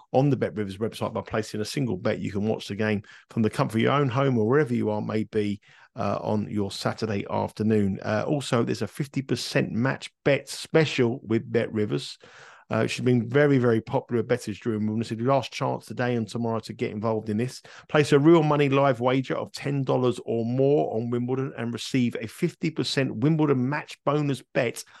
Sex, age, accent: male, 50-69, British